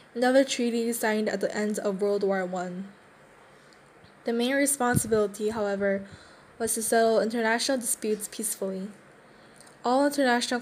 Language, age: Korean, 10-29